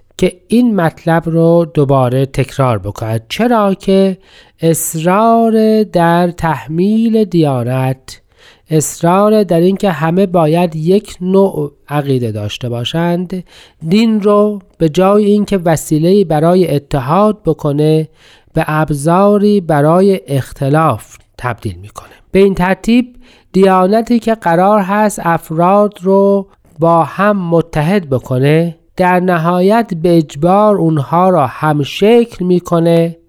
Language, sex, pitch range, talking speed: Persian, male, 150-195 Hz, 105 wpm